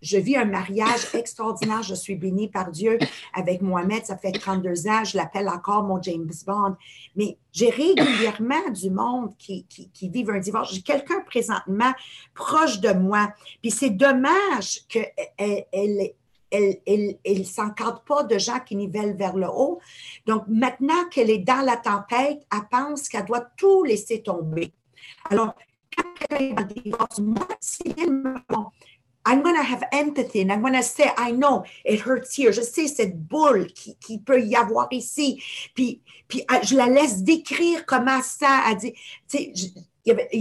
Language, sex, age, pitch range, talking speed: English, female, 50-69, 200-260 Hz, 185 wpm